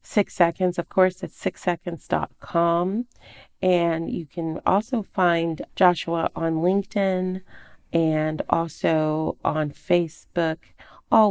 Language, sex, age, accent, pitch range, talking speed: English, female, 40-59, American, 155-195 Hz, 100 wpm